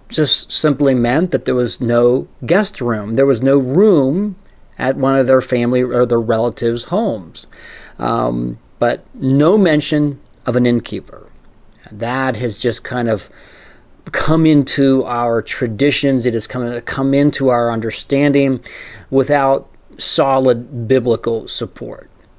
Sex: male